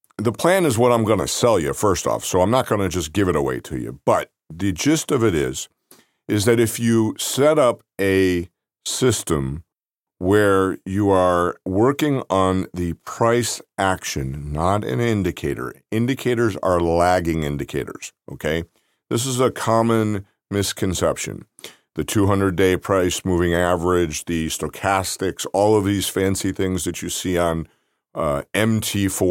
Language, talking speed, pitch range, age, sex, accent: English, 155 wpm, 85-105 Hz, 50-69, male, American